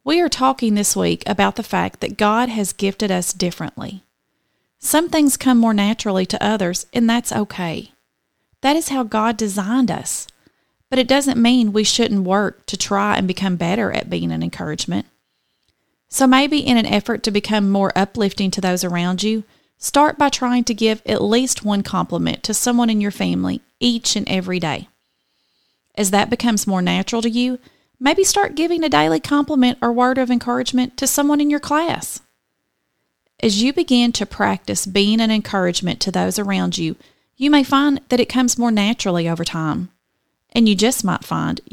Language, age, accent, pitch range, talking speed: English, 30-49, American, 180-245 Hz, 180 wpm